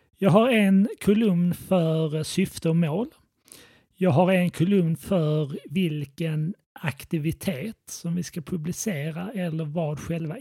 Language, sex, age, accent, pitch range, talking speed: Swedish, male, 30-49, native, 150-185 Hz, 125 wpm